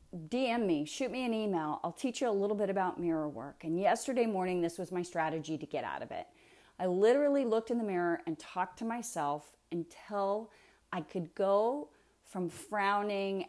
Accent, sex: American, female